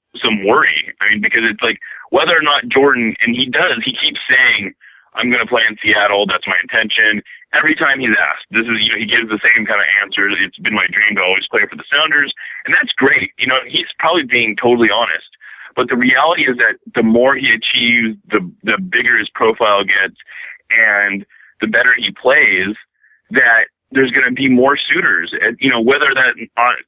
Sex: male